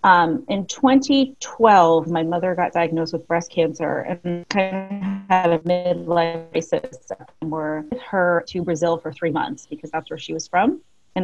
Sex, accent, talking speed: female, American, 180 wpm